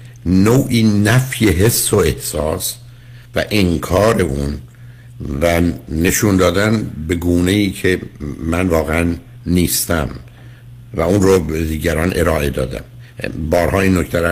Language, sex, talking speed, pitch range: Persian, male, 115 wpm, 80-110 Hz